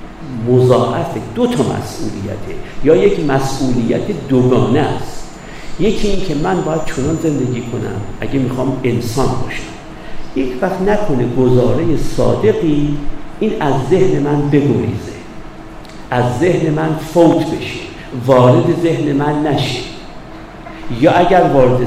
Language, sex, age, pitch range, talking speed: Persian, male, 50-69, 120-170 Hz, 115 wpm